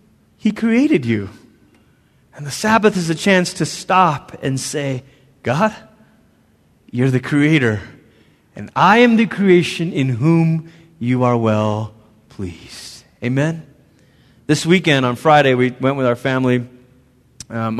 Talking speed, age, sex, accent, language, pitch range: 130 wpm, 30-49, male, American, English, 125-160 Hz